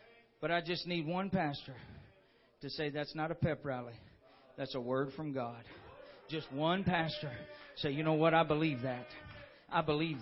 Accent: American